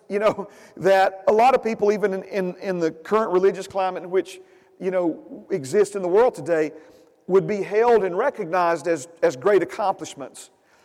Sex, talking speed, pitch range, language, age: male, 175 wpm, 180-230 Hz, English, 40-59